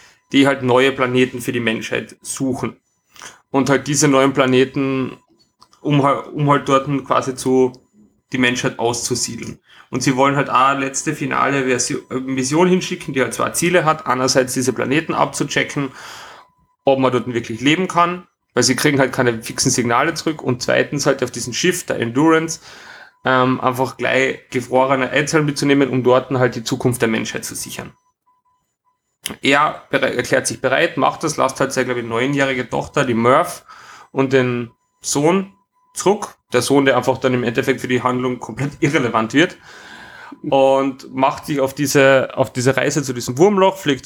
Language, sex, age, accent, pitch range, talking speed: German, male, 30-49, German, 125-150 Hz, 160 wpm